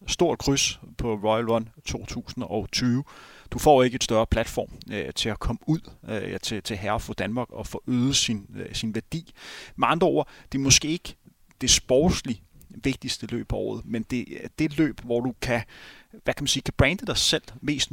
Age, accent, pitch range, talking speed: 30-49, native, 115-155 Hz, 200 wpm